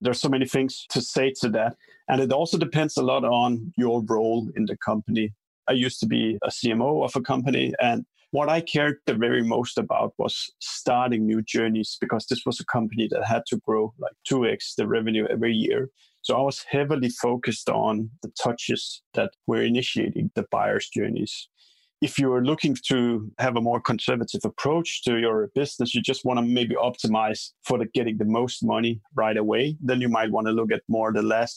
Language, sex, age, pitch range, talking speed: English, male, 30-49, 110-135 Hz, 205 wpm